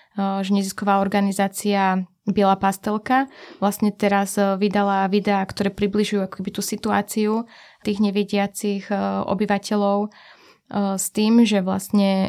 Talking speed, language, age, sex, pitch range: 105 wpm, Slovak, 20-39, female, 185-200 Hz